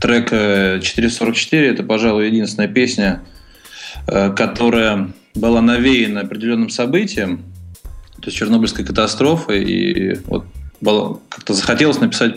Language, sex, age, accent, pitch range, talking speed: Russian, male, 20-39, native, 100-120 Hz, 95 wpm